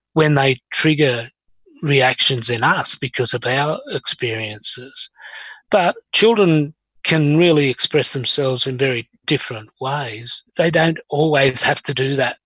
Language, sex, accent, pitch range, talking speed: English, male, Australian, 125-150 Hz, 130 wpm